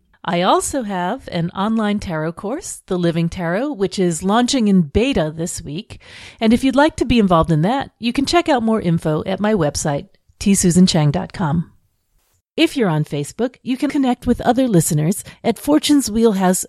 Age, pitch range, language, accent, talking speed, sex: 40-59, 165-245 Hz, English, American, 175 wpm, female